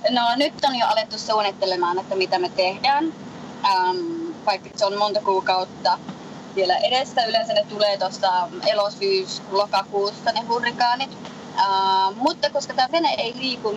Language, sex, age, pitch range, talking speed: Finnish, female, 20-39, 195-235 Hz, 140 wpm